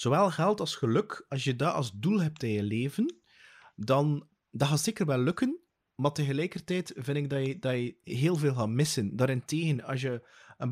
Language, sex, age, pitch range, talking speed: English, male, 30-49, 130-165 Hz, 195 wpm